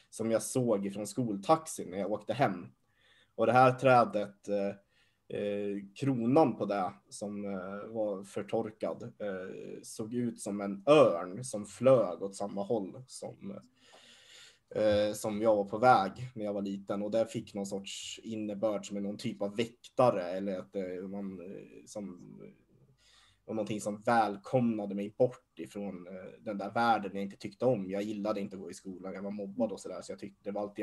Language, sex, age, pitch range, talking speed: Swedish, male, 20-39, 100-115 Hz, 175 wpm